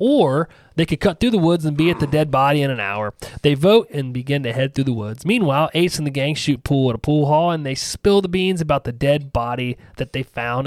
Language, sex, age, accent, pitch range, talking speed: English, male, 30-49, American, 130-170 Hz, 270 wpm